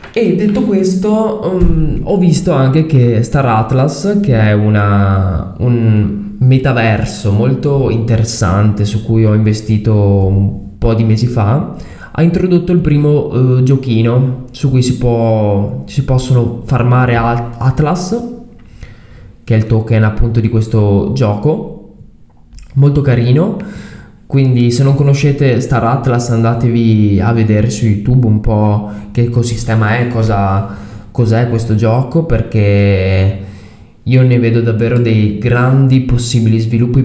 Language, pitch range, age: Italian, 110-135 Hz, 20-39